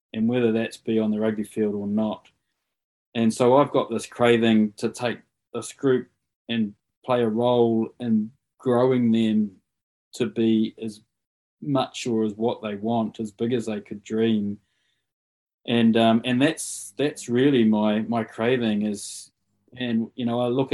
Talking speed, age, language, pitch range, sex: 165 wpm, 20-39, English, 110-120 Hz, male